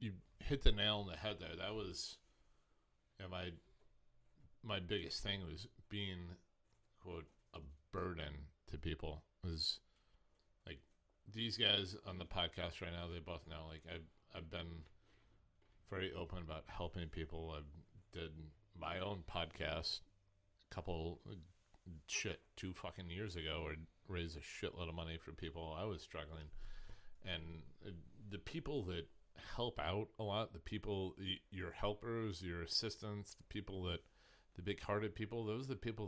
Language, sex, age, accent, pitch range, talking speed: English, male, 30-49, American, 80-100 Hz, 155 wpm